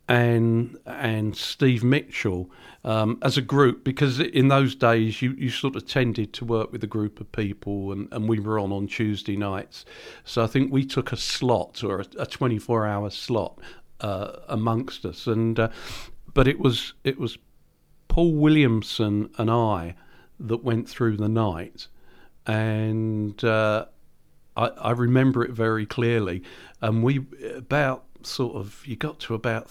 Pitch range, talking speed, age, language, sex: 110-145 Hz, 165 wpm, 50-69, English, male